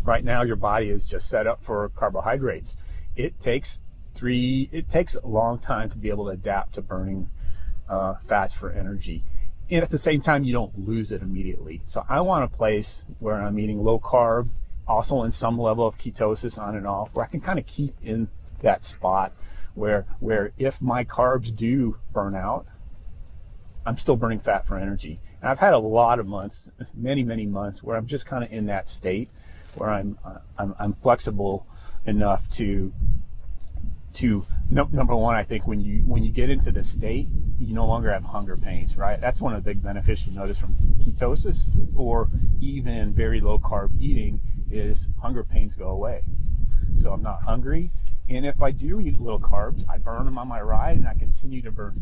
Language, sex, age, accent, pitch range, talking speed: English, male, 30-49, American, 95-115 Hz, 195 wpm